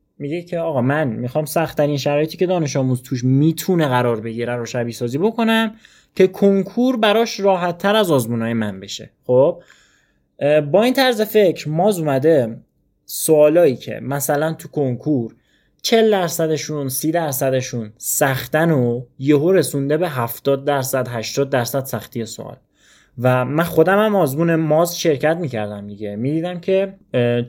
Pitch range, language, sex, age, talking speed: 125-175 Hz, Persian, male, 20-39, 140 wpm